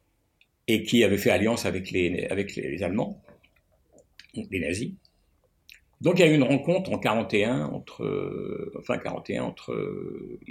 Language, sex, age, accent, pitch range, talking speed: French, male, 60-79, French, 95-140 Hz, 125 wpm